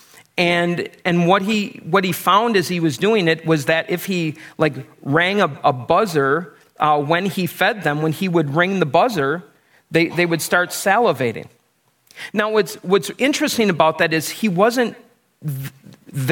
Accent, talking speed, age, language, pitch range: American, 175 wpm, 40-59, English, 160-210 Hz